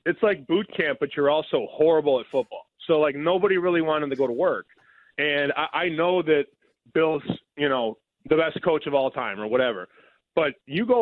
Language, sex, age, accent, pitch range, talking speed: English, male, 20-39, American, 135-170 Hz, 205 wpm